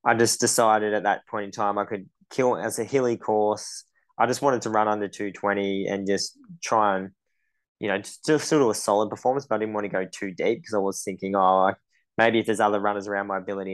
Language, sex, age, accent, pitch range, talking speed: English, male, 20-39, Australian, 100-115 Hz, 245 wpm